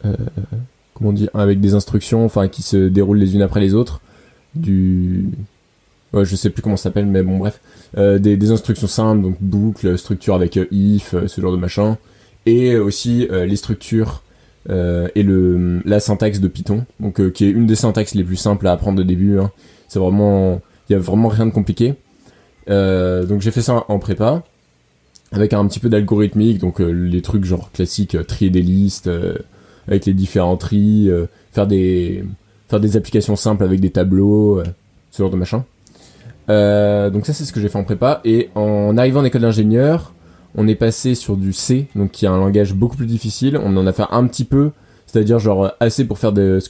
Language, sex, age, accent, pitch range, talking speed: French, male, 20-39, French, 95-110 Hz, 205 wpm